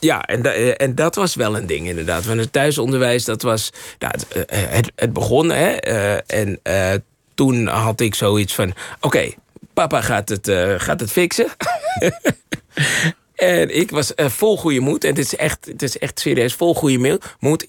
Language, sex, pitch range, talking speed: Dutch, male, 110-155 Hz, 190 wpm